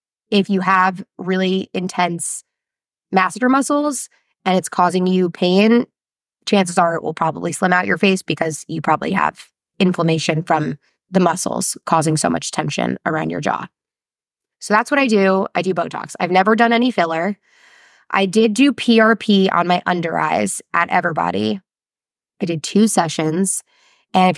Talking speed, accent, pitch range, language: 160 wpm, American, 170-205 Hz, English